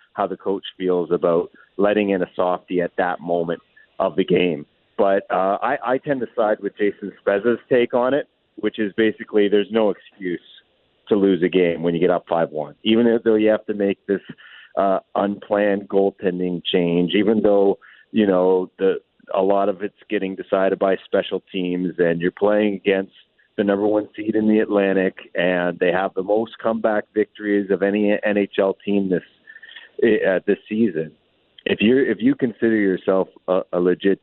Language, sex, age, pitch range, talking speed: English, male, 40-59, 90-105 Hz, 180 wpm